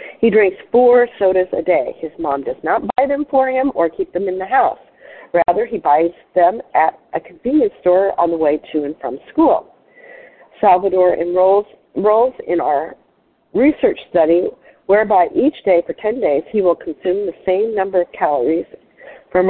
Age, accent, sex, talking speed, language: 50-69, American, female, 175 wpm, English